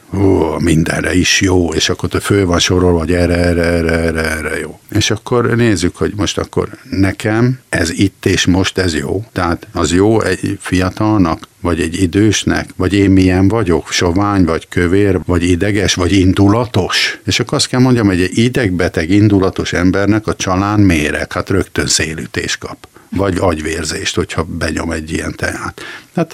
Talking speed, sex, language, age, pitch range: 170 wpm, male, Hungarian, 50-69, 85-105 Hz